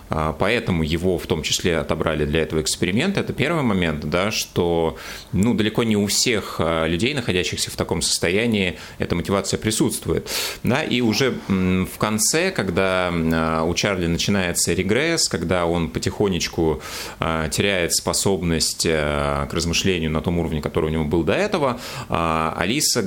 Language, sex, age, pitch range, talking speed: Russian, male, 30-49, 80-105 Hz, 135 wpm